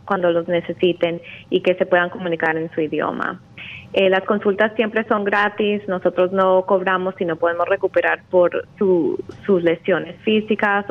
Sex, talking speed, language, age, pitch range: female, 160 wpm, Spanish, 20-39, 175-205 Hz